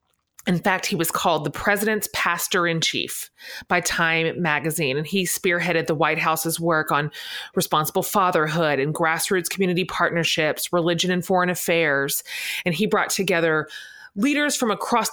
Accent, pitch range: American, 155-190 Hz